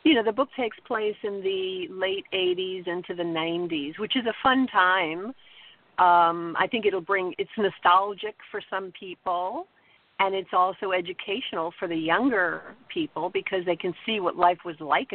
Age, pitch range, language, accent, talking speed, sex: 50-69, 160-200 Hz, English, American, 175 wpm, female